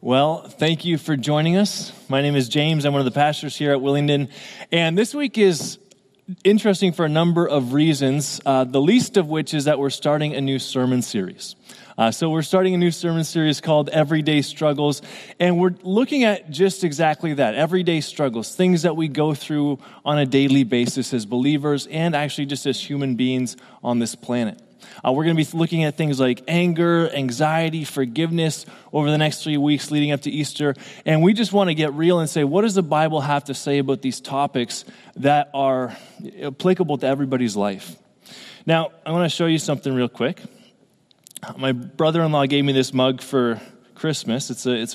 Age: 20-39